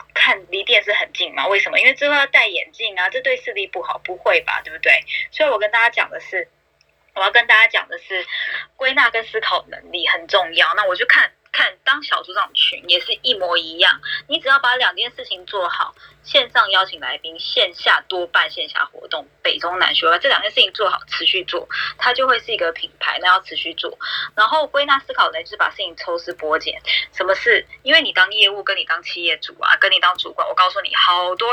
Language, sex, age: Chinese, female, 20-39